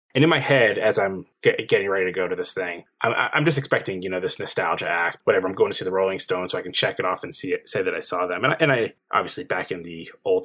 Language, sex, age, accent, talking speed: English, male, 20-39, American, 310 wpm